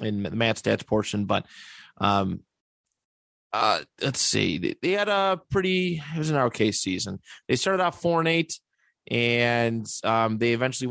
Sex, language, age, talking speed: male, English, 30-49, 160 wpm